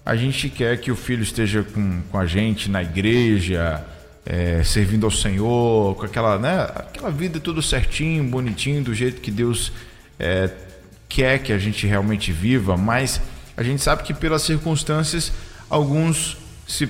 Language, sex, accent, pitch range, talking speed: Portuguese, male, Brazilian, 100-130 Hz, 155 wpm